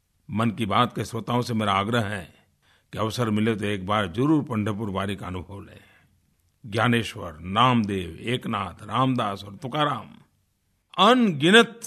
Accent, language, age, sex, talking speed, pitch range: native, Hindi, 50-69, male, 135 wpm, 100-150 Hz